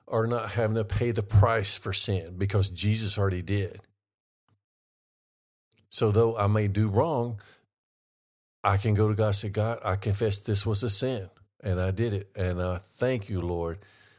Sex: male